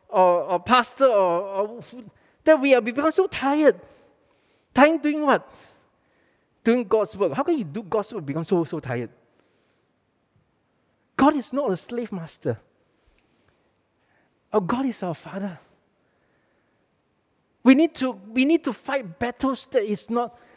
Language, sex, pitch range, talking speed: English, male, 155-250 Hz, 150 wpm